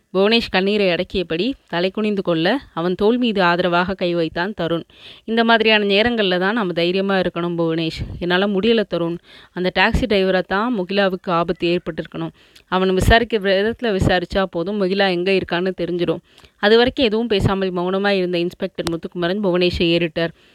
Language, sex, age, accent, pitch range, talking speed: Tamil, female, 20-39, native, 180-215 Hz, 145 wpm